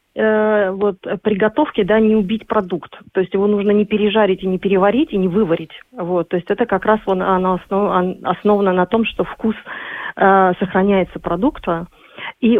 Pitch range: 175-210 Hz